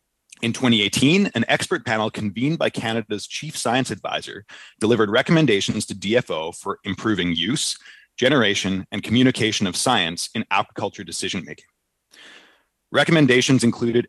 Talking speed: 125 wpm